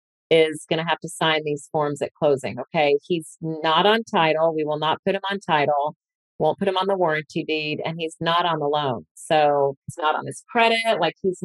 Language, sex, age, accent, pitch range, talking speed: English, female, 40-59, American, 155-195 Hz, 225 wpm